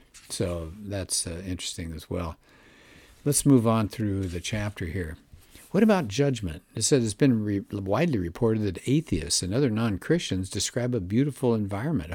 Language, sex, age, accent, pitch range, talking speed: English, male, 60-79, American, 95-125 Hz, 155 wpm